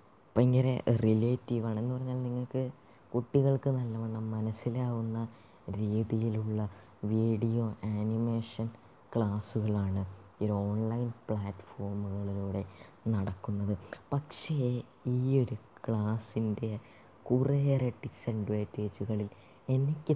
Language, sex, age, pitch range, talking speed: Malayalam, female, 20-39, 105-125 Hz, 70 wpm